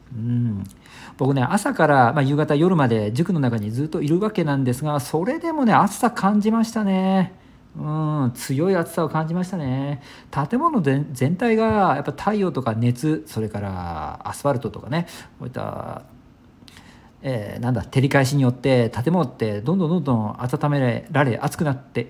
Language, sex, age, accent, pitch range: Japanese, male, 50-69, native, 125-195 Hz